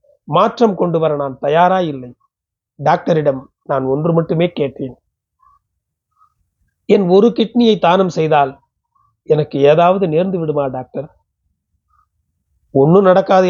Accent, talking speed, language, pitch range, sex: native, 100 wpm, Tamil, 145-190 Hz, male